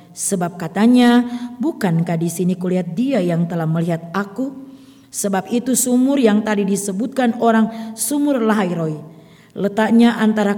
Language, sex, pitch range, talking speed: Indonesian, female, 190-230 Hz, 125 wpm